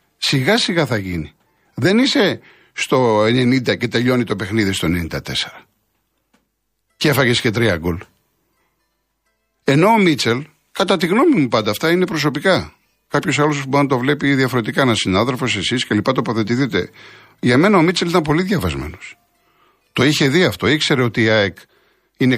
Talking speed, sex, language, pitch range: 155 wpm, male, Greek, 105-140 Hz